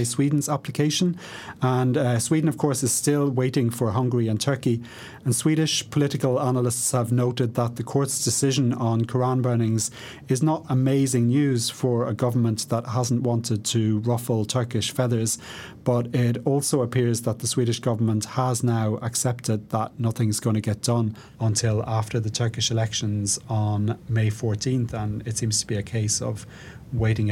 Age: 30-49